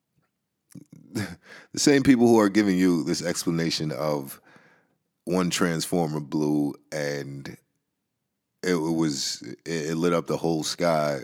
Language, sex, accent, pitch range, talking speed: English, male, American, 80-100 Hz, 115 wpm